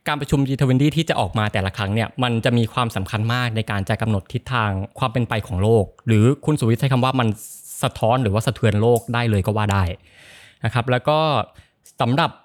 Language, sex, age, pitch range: Thai, male, 20-39, 105-130 Hz